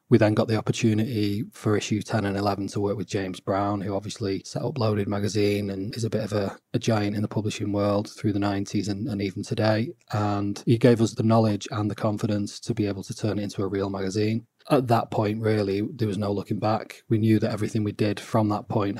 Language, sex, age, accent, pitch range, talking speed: English, male, 20-39, British, 100-115 Hz, 245 wpm